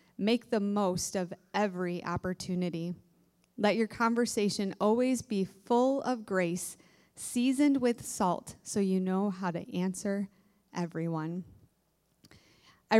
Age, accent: 20-39, American